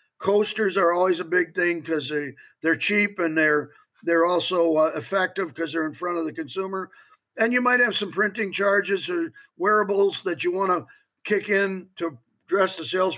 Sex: male